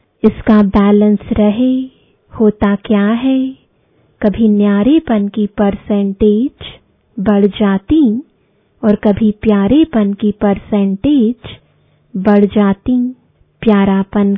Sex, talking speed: female, 90 wpm